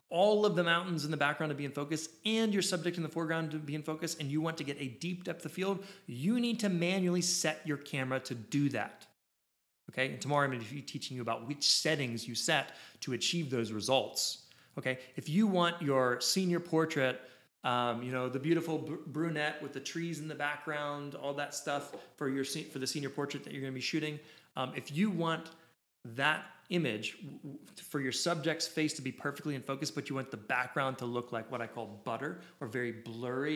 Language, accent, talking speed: English, American, 220 wpm